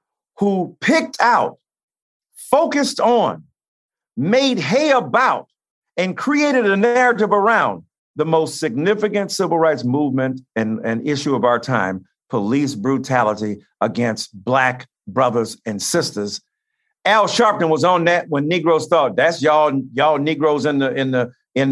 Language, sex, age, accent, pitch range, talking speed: English, male, 50-69, American, 140-195 Hz, 135 wpm